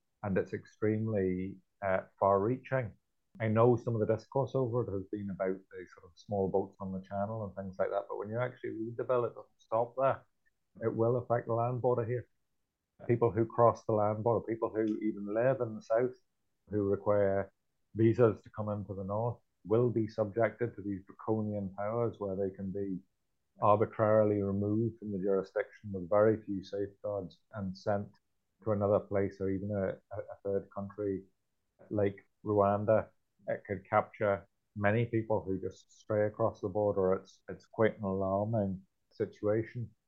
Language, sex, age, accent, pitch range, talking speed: English, male, 30-49, British, 100-110 Hz, 175 wpm